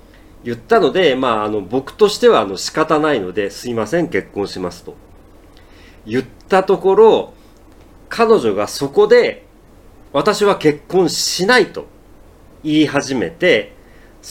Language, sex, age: Japanese, male, 40-59